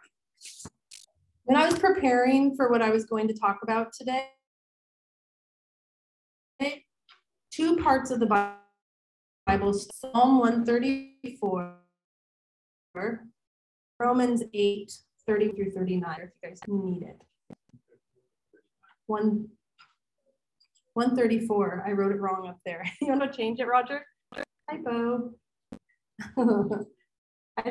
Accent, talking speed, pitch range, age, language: American, 100 wpm, 210-285 Hz, 30-49, English